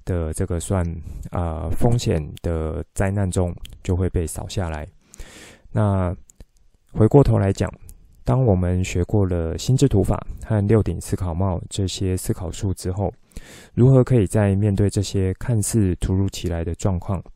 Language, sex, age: Chinese, male, 20-39